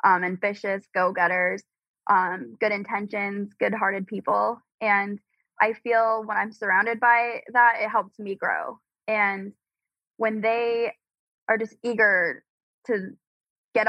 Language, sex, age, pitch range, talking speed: English, female, 10-29, 195-225 Hz, 115 wpm